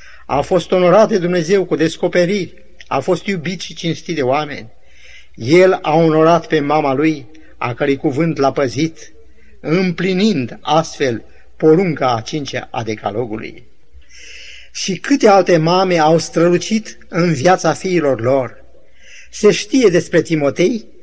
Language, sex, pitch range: Romanian, male, 150-190 Hz